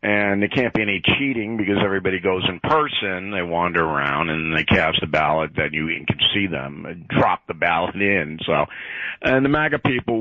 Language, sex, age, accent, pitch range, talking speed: English, male, 50-69, American, 95-120 Hz, 200 wpm